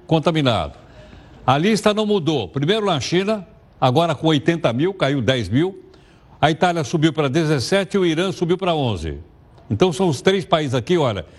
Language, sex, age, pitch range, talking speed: Portuguese, male, 60-79, 135-180 Hz, 175 wpm